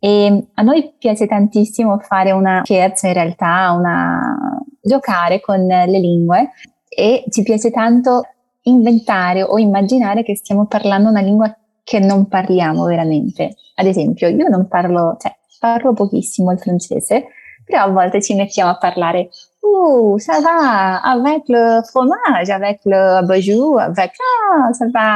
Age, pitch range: 20-39, 185-230 Hz